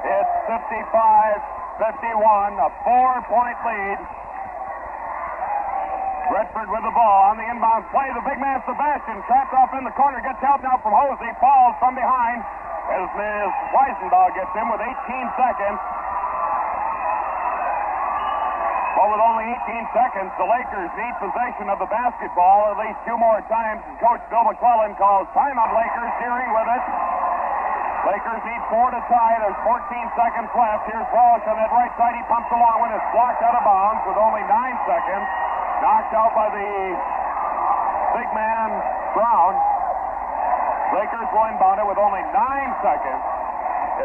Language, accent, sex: English, American, male